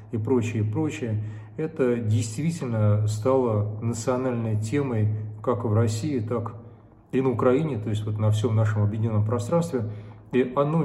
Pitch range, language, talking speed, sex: 105-125 Hz, Russian, 145 wpm, male